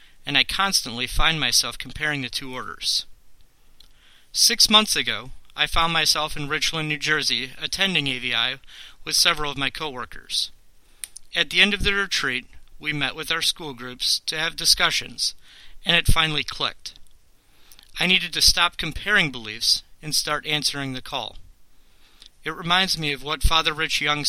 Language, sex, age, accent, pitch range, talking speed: English, male, 40-59, American, 120-150 Hz, 160 wpm